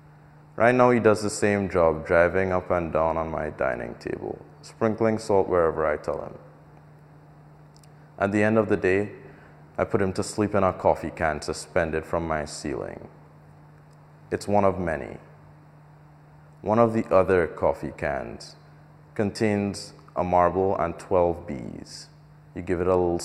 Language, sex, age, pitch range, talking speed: English, male, 30-49, 90-150 Hz, 155 wpm